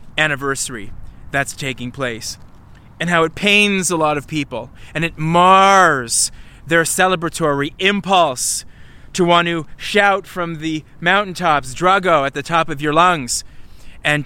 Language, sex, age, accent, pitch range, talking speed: English, male, 30-49, American, 125-180 Hz, 140 wpm